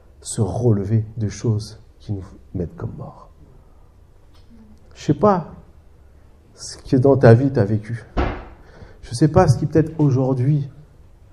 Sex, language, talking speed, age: male, French, 155 wpm, 50-69